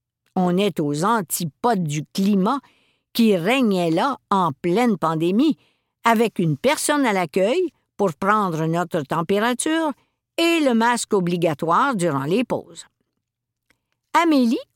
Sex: female